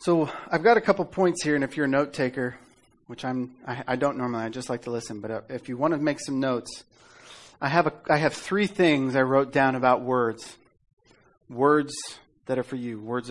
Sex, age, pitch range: male, 40-59, 120-140 Hz